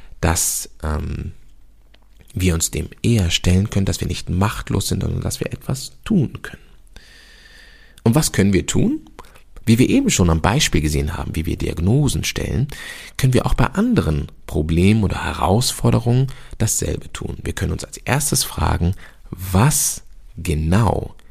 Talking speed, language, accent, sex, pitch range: 150 wpm, German, German, male, 85-120 Hz